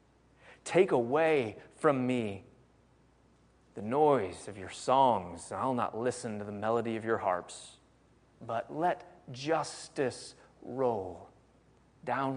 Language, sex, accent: English, male, American